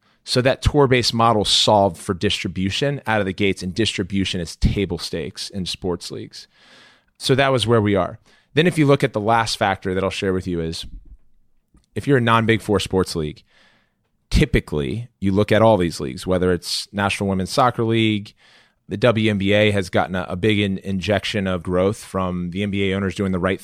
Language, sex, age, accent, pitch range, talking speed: English, male, 30-49, American, 90-110 Hz, 195 wpm